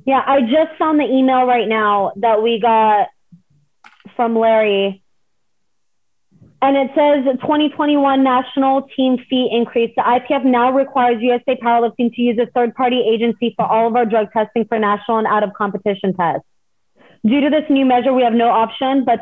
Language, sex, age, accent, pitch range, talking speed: English, female, 30-49, American, 210-255 Hz, 165 wpm